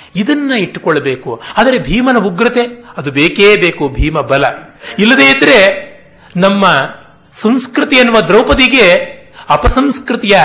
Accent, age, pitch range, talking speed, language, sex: native, 40-59, 165-235 Hz, 100 wpm, Kannada, male